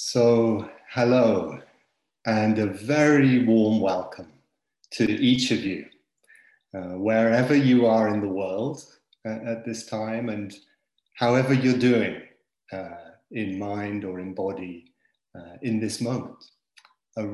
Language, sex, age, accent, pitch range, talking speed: English, male, 40-59, British, 105-130 Hz, 130 wpm